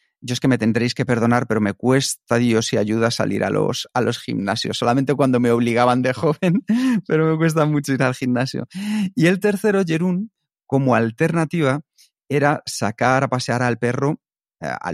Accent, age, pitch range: Spanish, 40-59, 120-165 Hz